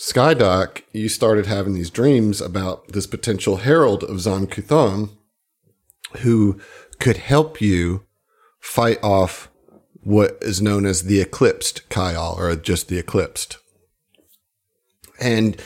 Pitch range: 100-120 Hz